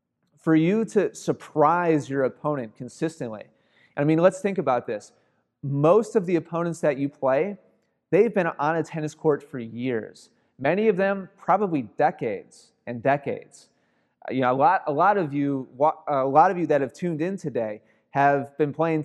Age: 30-49